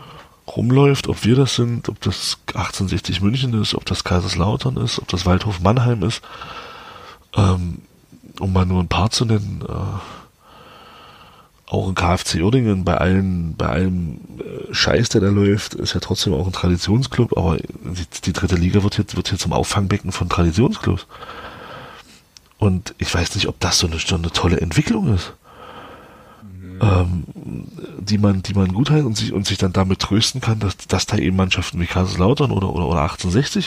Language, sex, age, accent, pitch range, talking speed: German, male, 40-59, German, 90-110 Hz, 170 wpm